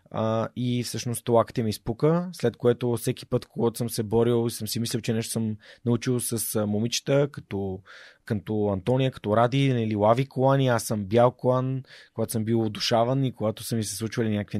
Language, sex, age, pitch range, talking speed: Bulgarian, male, 30-49, 115-145 Hz, 195 wpm